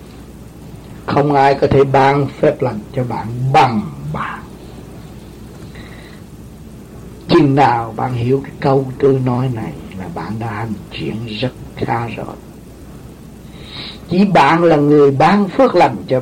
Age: 60-79